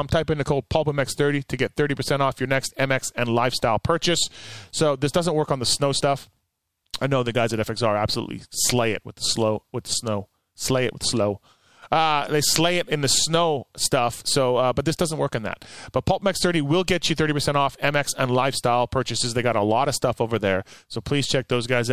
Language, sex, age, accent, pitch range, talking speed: English, male, 30-49, American, 120-150 Hz, 235 wpm